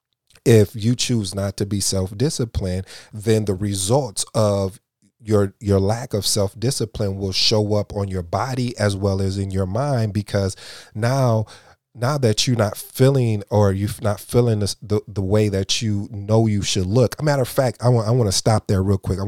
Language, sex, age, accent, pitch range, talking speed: English, male, 30-49, American, 95-120 Hz, 190 wpm